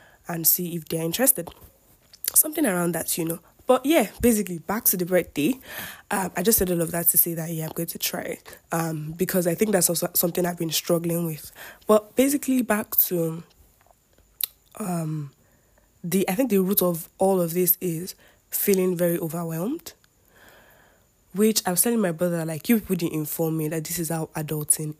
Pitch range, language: 165-205 Hz, English